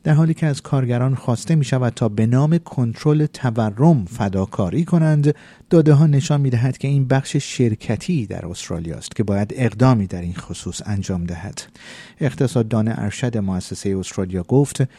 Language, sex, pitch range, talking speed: Persian, male, 100-145 Hz, 155 wpm